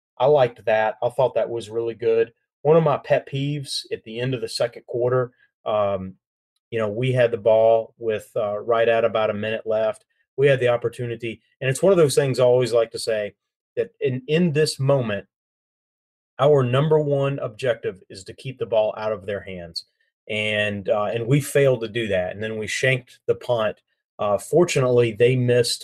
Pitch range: 110-140 Hz